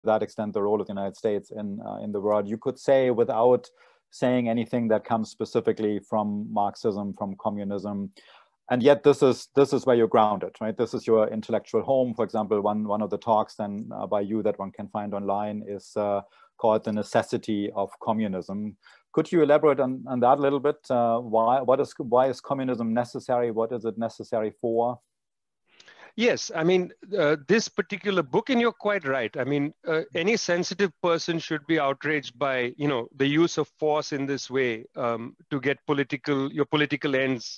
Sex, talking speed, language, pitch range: male, 195 wpm, English, 115-155 Hz